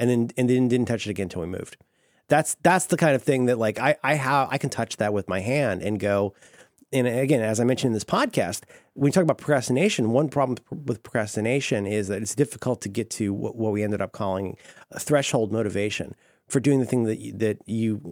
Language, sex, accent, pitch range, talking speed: English, male, American, 110-145 Hz, 240 wpm